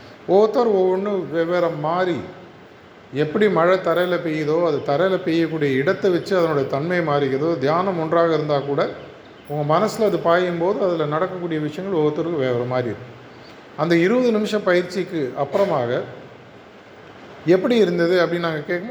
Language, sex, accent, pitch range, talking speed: Tamil, male, native, 145-185 Hz, 125 wpm